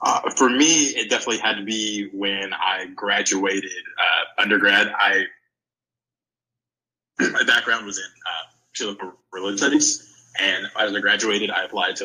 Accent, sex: American, male